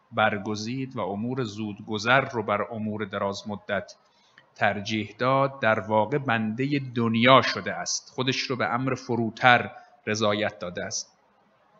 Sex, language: male, Persian